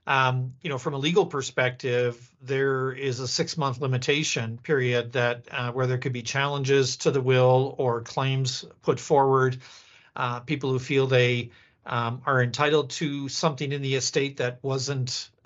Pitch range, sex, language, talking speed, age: 125-150 Hz, male, English, 165 wpm, 50-69